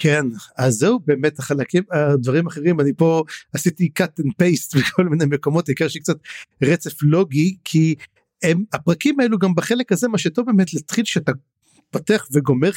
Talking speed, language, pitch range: 160 wpm, Hebrew, 150-200 Hz